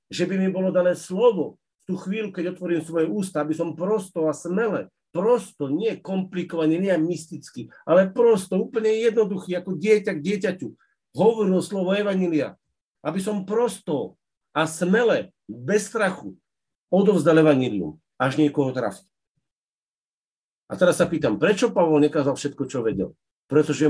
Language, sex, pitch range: Slovak, male, 150-190 Hz